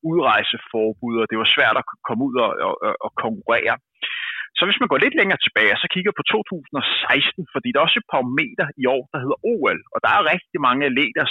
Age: 30-49